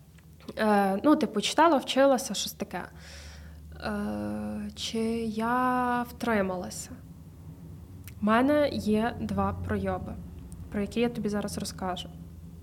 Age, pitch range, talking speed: 20-39, 195-240 Hz, 100 wpm